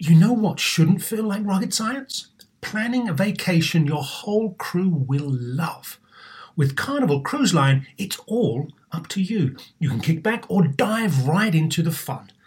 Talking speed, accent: 170 wpm, British